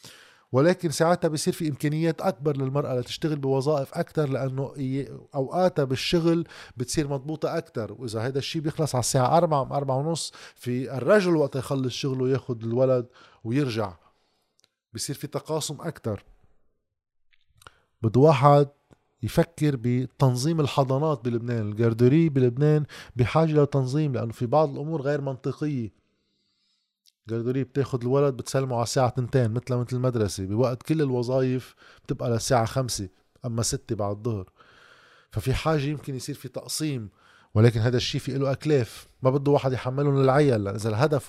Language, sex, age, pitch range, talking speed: Arabic, male, 20-39, 125-150 Hz, 135 wpm